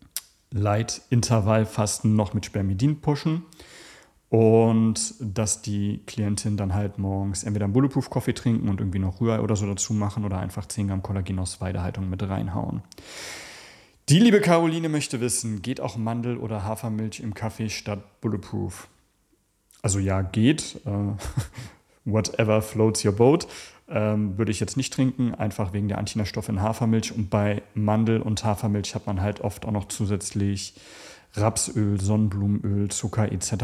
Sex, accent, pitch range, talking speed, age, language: male, German, 100-115 Hz, 145 wpm, 30-49, German